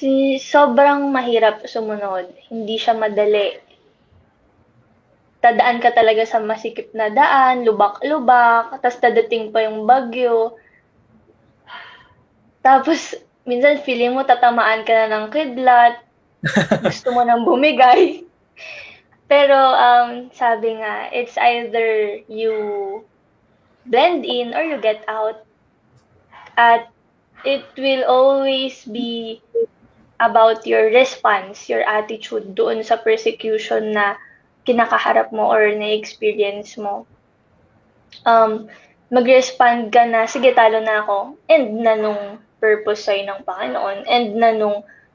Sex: female